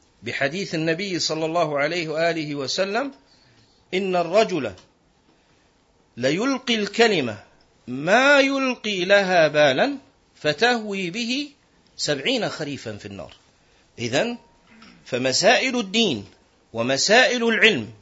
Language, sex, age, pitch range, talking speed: Arabic, male, 50-69, 150-235 Hz, 85 wpm